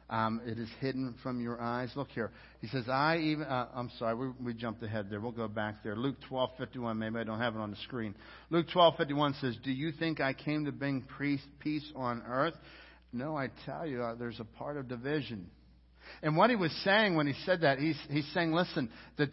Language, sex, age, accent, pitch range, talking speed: English, male, 60-79, American, 125-175 Hz, 225 wpm